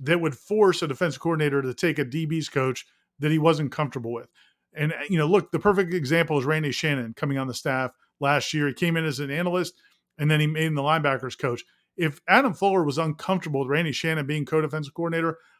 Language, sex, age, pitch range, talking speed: English, male, 40-59, 145-175 Hz, 220 wpm